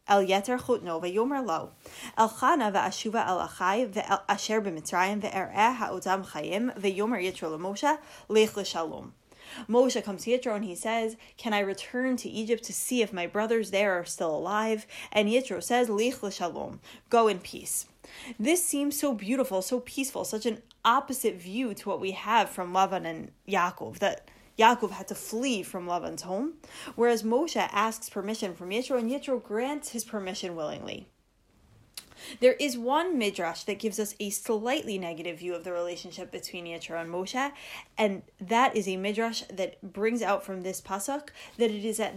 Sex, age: female, 20-39